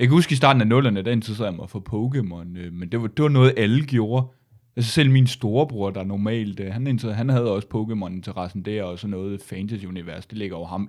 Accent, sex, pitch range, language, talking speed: native, male, 105-135 Hz, Danish, 230 wpm